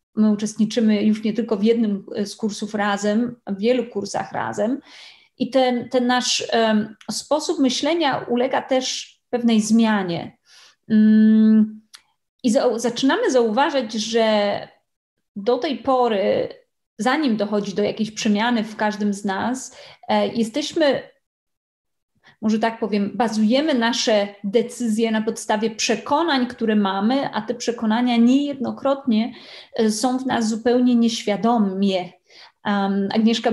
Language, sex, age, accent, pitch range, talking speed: Polish, female, 30-49, native, 210-245 Hz, 120 wpm